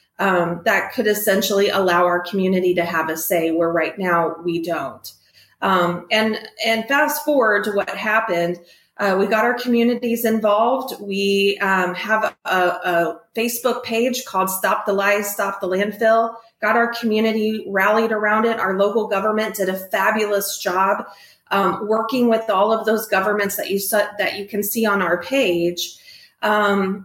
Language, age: English, 30-49